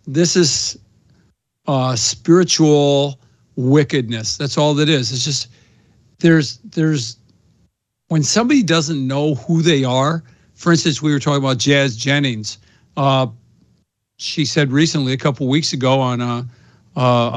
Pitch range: 125-160 Hz